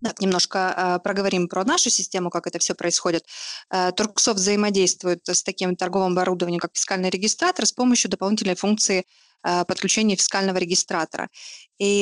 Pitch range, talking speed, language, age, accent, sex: 190-240 Hz, 145 wpm, Russian, 20-39, native, female